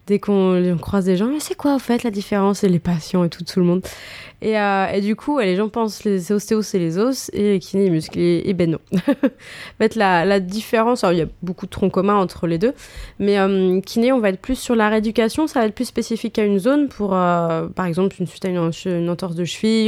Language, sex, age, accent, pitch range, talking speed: French, female, 20-39, French, 175-215 Hz, 250 wpm